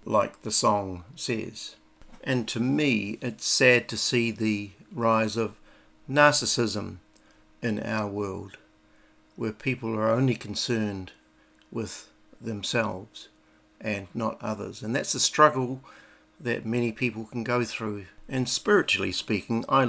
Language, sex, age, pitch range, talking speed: English, male, 50-69, 105-120 Hz, 125 wpm